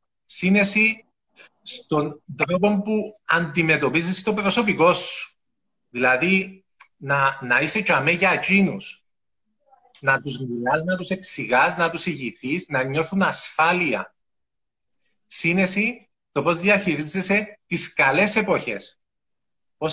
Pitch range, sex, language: 145-190 Hz, male, Greek